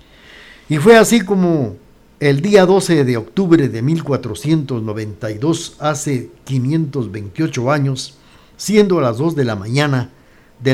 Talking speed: 125 wpm